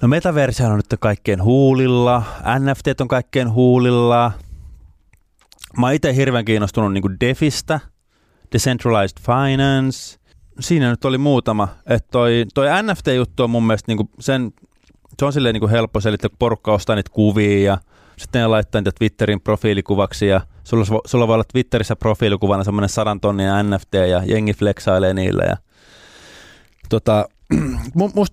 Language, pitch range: Finnish, 100-120 Hz